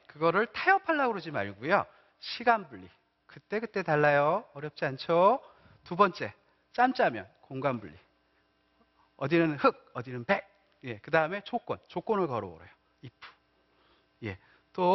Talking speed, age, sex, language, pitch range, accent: 110 wpm, 40-59, male, English, 120-195 Hz, Korean